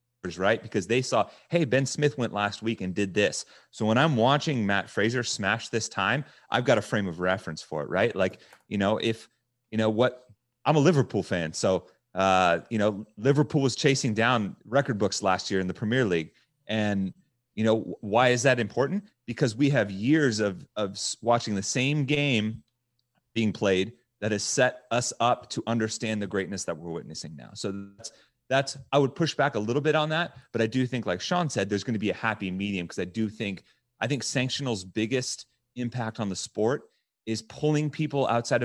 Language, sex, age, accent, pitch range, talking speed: English, male, 30-49, American, 100-125 Hz, 205 wpm